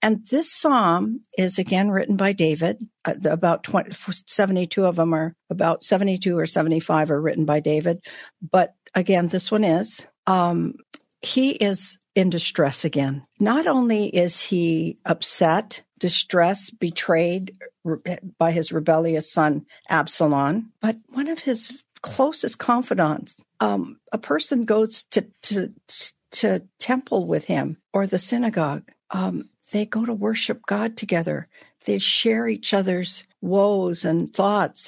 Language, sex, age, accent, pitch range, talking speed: English, female, 60-79, American, 165-215 Hz, 140 wpm